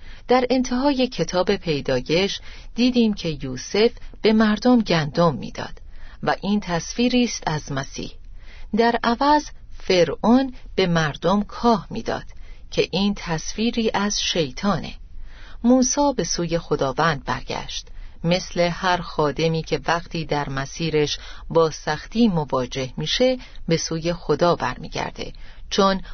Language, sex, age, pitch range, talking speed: Persian, female, 40-59, 150-210 Hz, 115 wpm